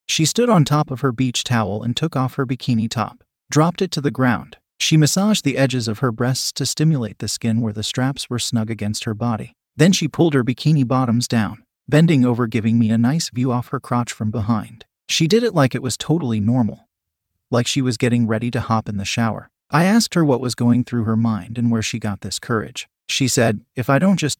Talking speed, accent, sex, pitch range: 235 wpm, American, male, 110-140 Hz